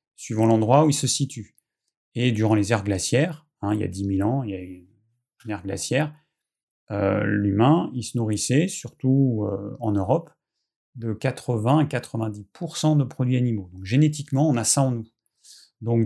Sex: male